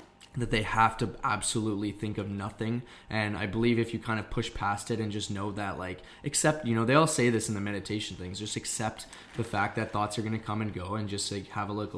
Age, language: 20-39, English